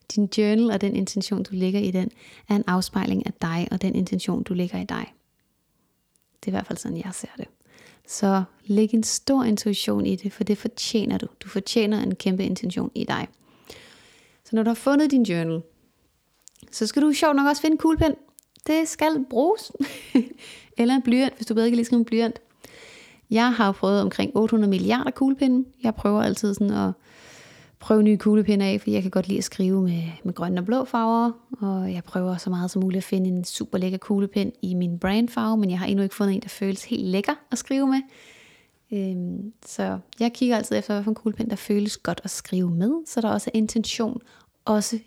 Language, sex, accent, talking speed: English, female, Danish, 205 wpm